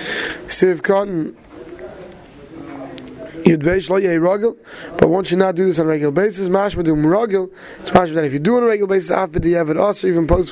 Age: 20-39